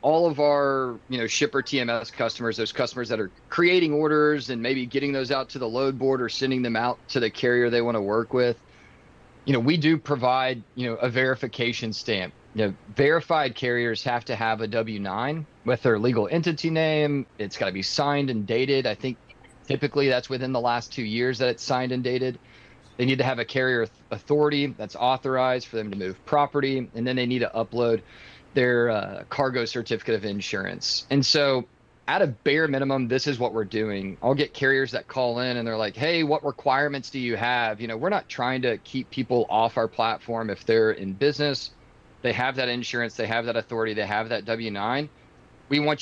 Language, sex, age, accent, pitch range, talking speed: English, male, 30-49, American, 115-135 Hz, 210 wpm